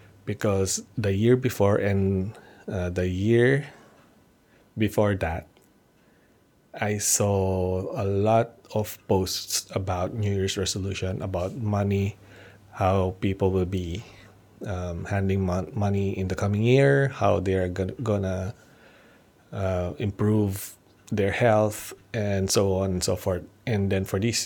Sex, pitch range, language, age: male, 95-105 Hz, English, 20-39